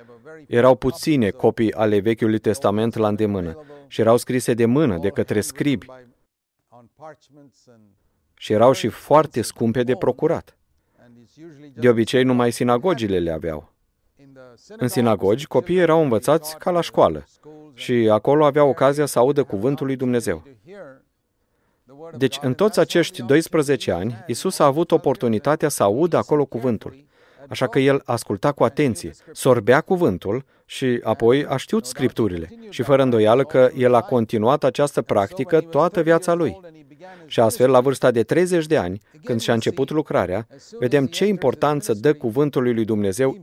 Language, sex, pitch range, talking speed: Romanian, male, 115-145 Hz, 145 wpm